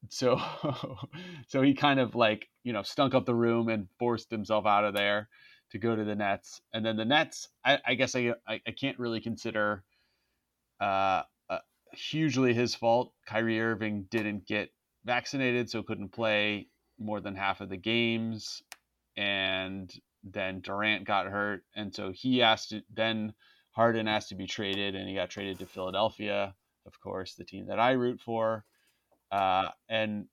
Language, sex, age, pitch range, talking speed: English, male, 30-49, 100-115 Hz, 170 wpm